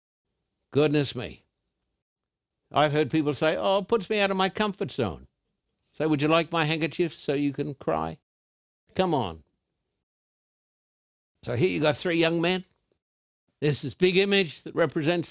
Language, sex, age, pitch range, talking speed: English, male, 60-79, 135-185 Hz, 160 wpm